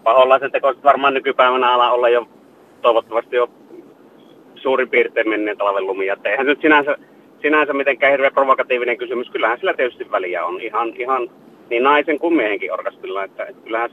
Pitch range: 120-150 Hz